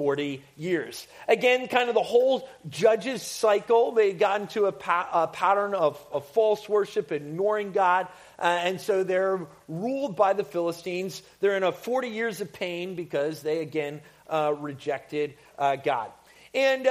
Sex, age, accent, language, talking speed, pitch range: male, 40-59, American, English, 155 wpm, 170-240 Hz